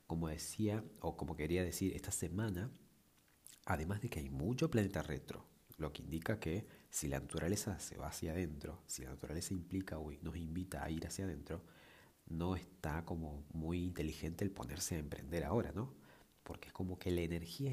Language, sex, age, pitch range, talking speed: Spanish, male, 40-59, 80-105 Hz, 185 wpm